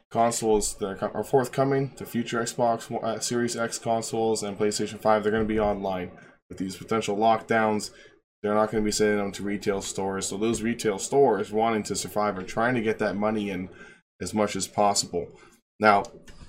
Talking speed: 185 wpm